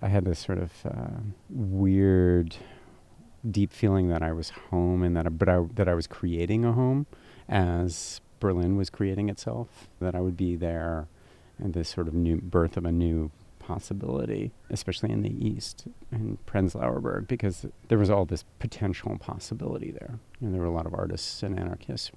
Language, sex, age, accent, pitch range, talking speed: English, male, 40-59, American, 85-105 Hz, 180 wpm